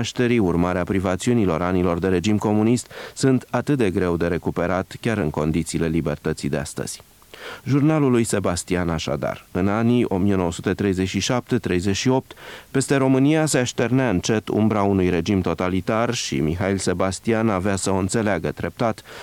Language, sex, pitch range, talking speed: Romanian, male, 90-115 Hz, 130 wpm